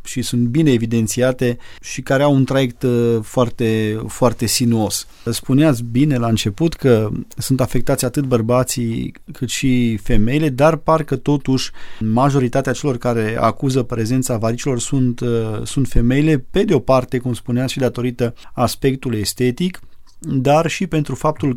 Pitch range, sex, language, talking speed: 115-135 Hz, male, Romanian, 135 wpm